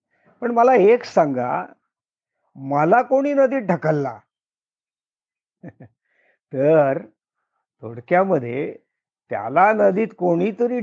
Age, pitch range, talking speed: 50-69, 130-215 Hz, 70 wpm